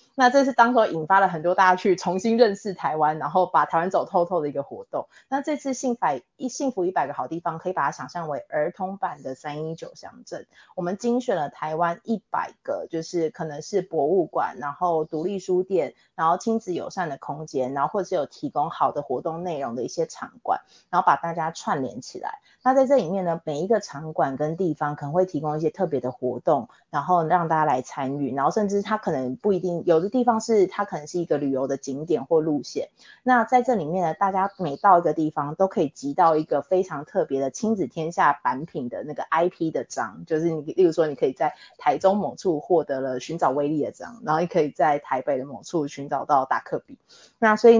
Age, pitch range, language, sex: 20-39, 150-200 Hz, Chinese, female